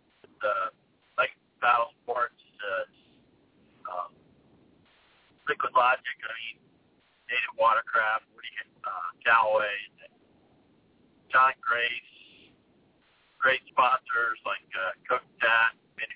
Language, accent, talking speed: English, American, 80 wpm